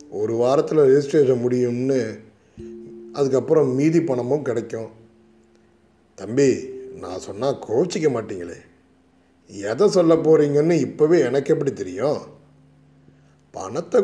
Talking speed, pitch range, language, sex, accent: 90 wpm, 110-160 Hz, Tamil, male, native